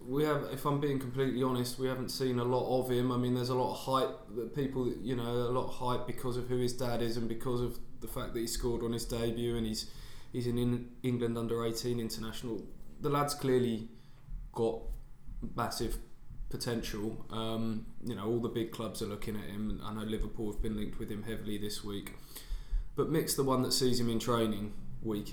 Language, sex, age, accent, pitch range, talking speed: English, male, 20-39, British, 110-125 Hz, 220 wpm